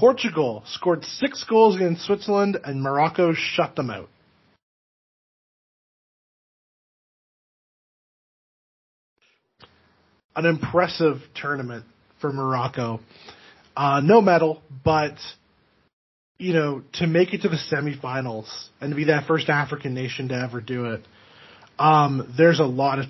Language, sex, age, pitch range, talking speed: English, male, 20-39, 125-155 Hz, 115 wpm